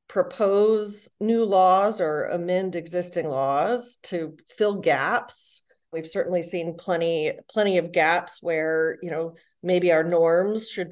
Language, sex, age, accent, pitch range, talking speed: English, female, 30-49, American, 170-215 Hz, 130 wpm